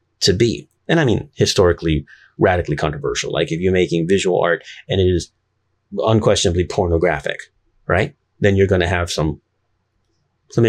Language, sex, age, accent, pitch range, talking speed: English, male, 30-49, American, 85-105 Hz, 145 wpm